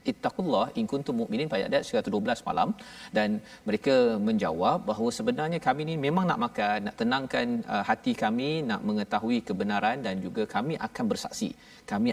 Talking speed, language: 150 wpm, Malayalam